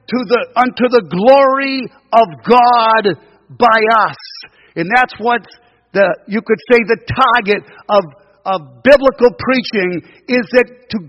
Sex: male